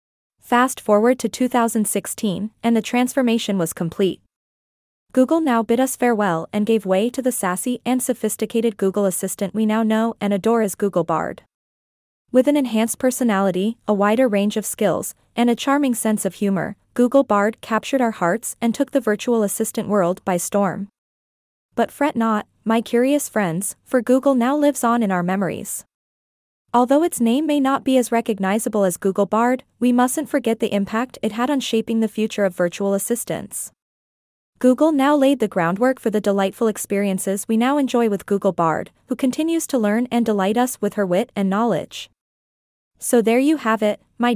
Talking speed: 180 wpm